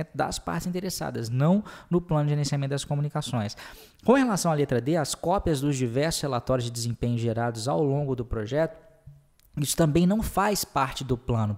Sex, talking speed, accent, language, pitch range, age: male, 175 wpm, Brazilian, Portuguese, 120-165 Hz, 20-39